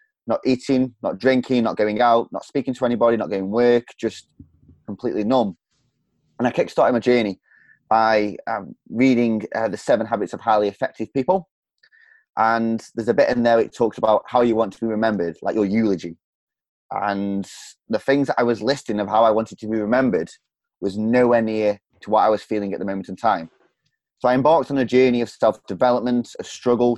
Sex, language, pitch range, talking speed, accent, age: male, English, 110-130 Hz, 200 wpm, British, 20-39